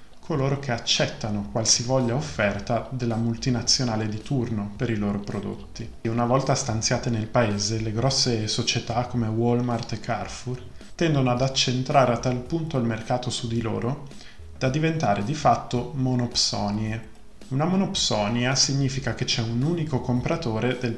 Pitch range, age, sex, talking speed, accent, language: 110-130 Hz, 20-39, male, 145 wpm, native, Italian